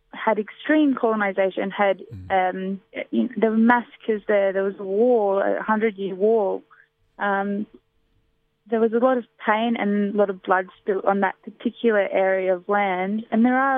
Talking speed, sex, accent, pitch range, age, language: 170 wpm, female, Australian, 195-225 Hz, 20-39, English